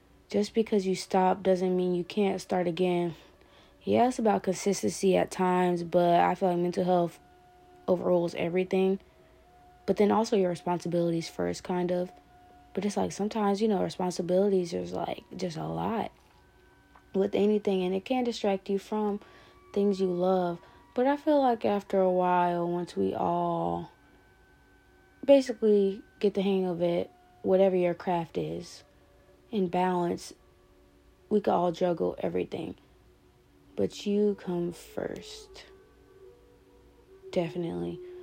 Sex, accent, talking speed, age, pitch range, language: female, American, 135 wpm, 20-39, 175-205 Hz, English